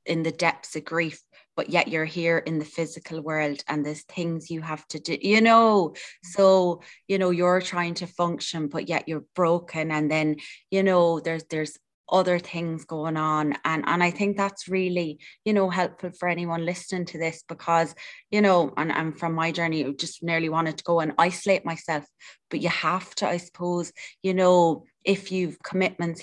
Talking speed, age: 195 wpm, 20-39